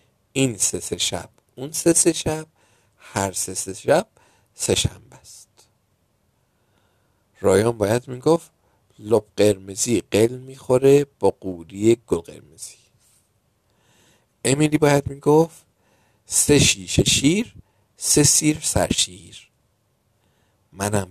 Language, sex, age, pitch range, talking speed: Persian, male, 50-69, 100-135 Hz, 100 wpm